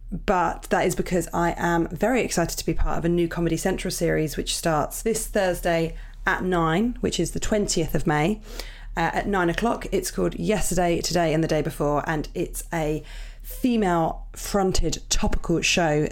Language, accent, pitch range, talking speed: English, British, 160-195 Hz, 175 wpm